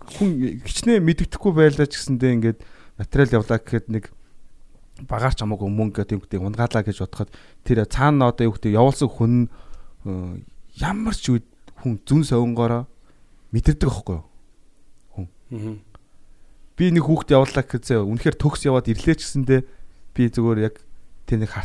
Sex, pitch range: male, 105-135 Hz